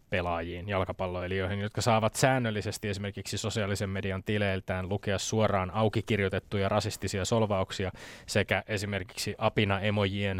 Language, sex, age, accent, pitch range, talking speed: Finnish, male, 20-39, native, 100-115 Hz, 105 wpm